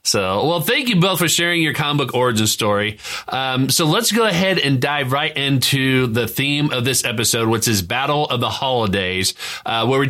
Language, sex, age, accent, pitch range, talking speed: English, male, 30-49, American, 115-155 Hz, 210 wpm